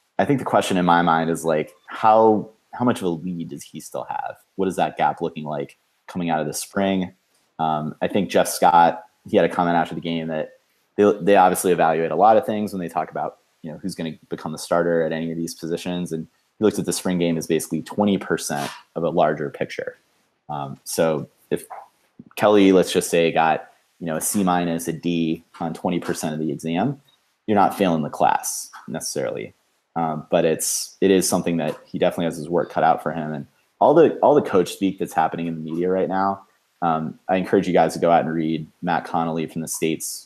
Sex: male